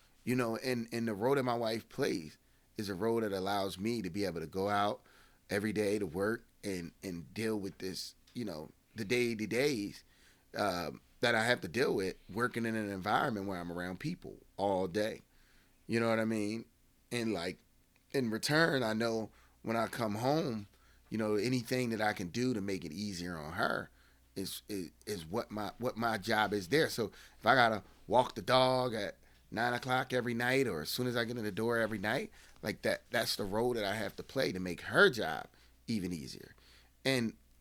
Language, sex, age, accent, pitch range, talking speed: English, male, 30-49, American, 100-130 Hz, 205 wpm